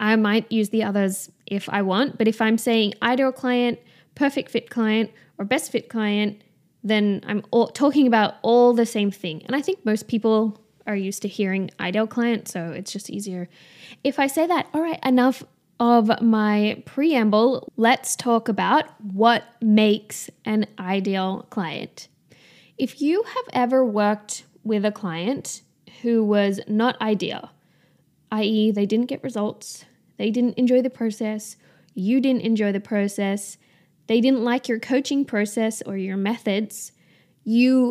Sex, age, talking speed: female, 10-29, 155 wpm